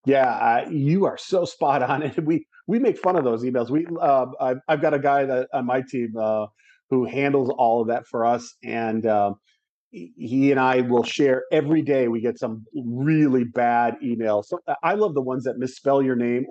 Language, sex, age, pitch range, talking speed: English, male, 40-59, 120-170 Hz, 210 wpm